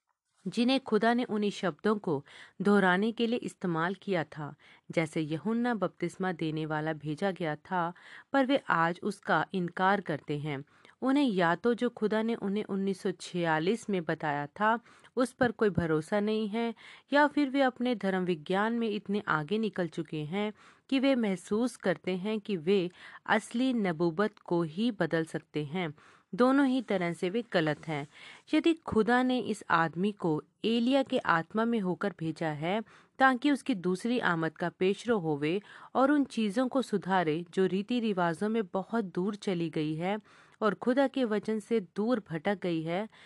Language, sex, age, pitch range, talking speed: Hindi, female, 40-59, 170-230 Hz, 165 wpm